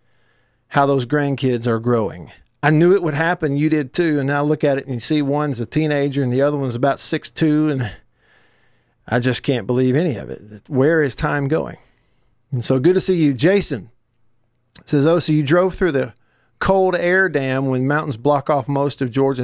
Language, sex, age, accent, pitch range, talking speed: English, male, 50-69, American, 120-155 Hz, 205 wpm